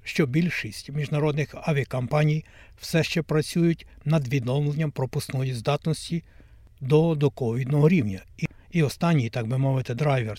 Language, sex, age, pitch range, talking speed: Ukrainian, male, 60-79, 120-150 Hz, 120 wpm